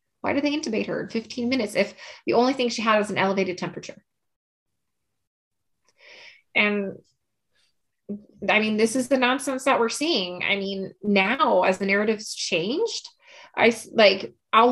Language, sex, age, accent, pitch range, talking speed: English, female, 20-39, American, 195-260 Hz, 155 wpm